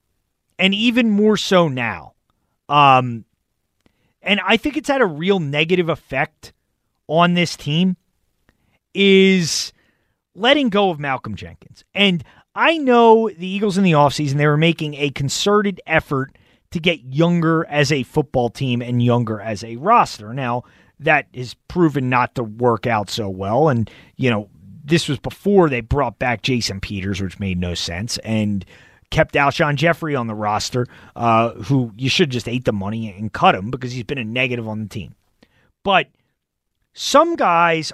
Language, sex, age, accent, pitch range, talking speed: English, male, 30-49, American, 115-190 Hz, 165 wpm